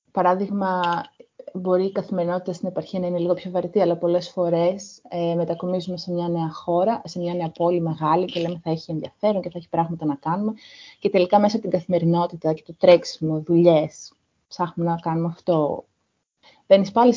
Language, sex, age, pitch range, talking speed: Greek, female, 20-39, 165-195 Hz, 180 wpm